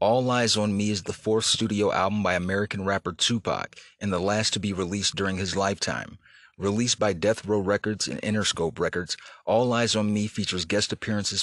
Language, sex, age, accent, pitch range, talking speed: English, male, 30-49, American, 100-115 Hz, 195 wpm